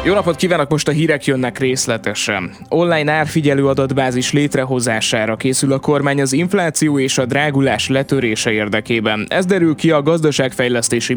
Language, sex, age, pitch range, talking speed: Hungarian, male, 20-39, 120-155 Hz, 145 wpm